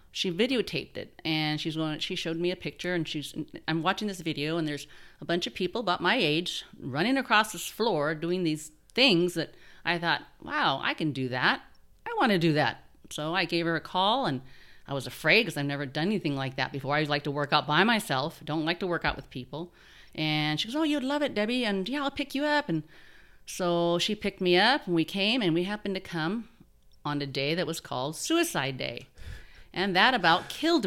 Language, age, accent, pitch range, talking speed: English, 40-59, American, 150-205 Hz, 230 wpm